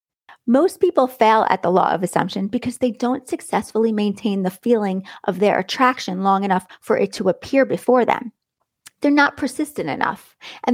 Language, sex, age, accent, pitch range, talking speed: English, female, 30-49, American, 195-255 Hz, 175 wpm